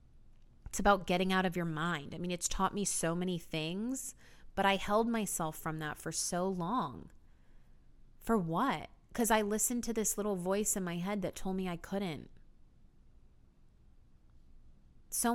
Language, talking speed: English, 165 wpm